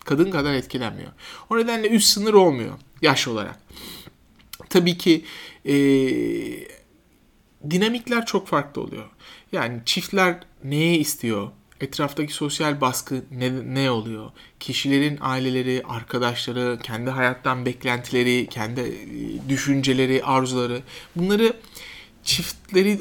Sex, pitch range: male, 130-190 Hz